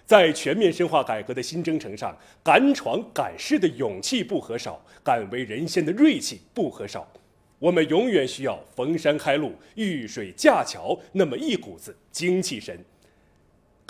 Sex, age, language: male, 30-49, Chinese